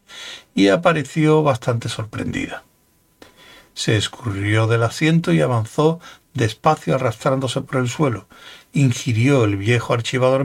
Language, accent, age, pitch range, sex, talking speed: Spanish, Spanish, 60-79, 115-150 Hz, male, 110 wpm